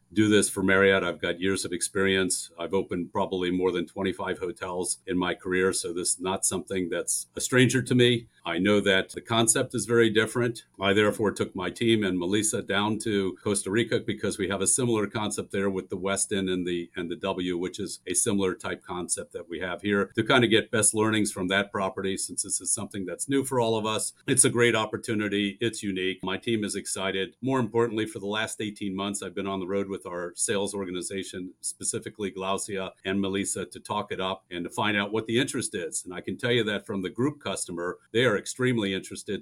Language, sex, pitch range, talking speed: English, male, 95-110 Hz, 225 wpm